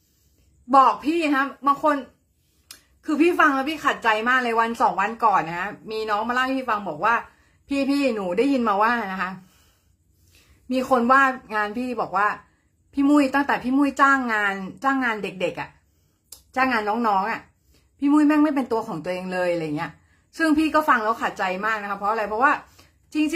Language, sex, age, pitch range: Thai, female, 30-49, 185-265 Hz